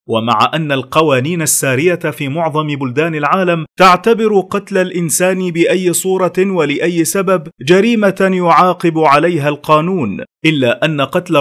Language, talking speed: Arabic, 115 wpm